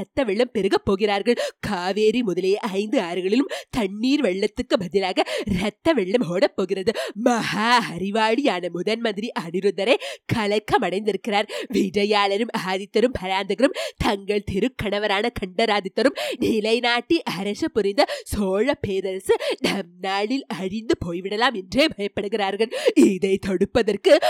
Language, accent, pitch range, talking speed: Tamil, native, 190-235 Hz, 90 wpm